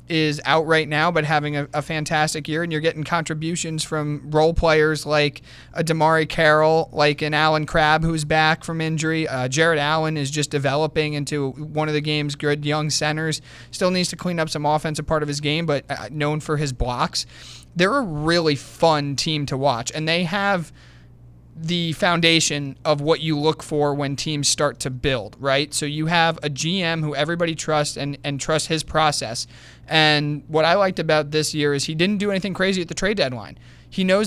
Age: 30-49